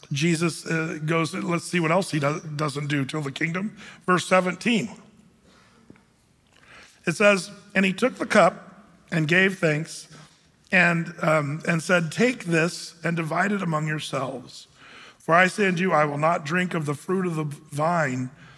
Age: 40-59